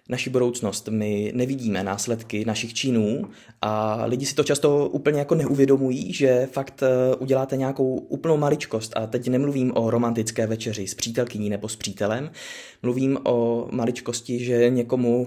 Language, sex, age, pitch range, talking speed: Czech, male, 20-39, 110-135 Hz, 145 wpm